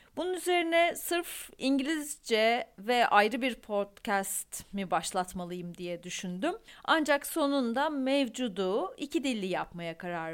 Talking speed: 110 wpm